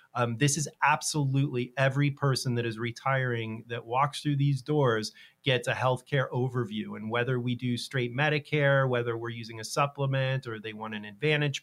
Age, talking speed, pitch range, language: 30-49, 175 wpm, 125-145 Hz, English